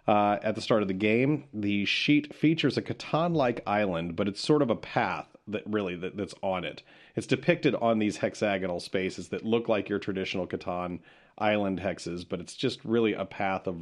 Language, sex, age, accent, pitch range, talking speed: English, male, 40-59, American, 95-115 Hz, 200 wpm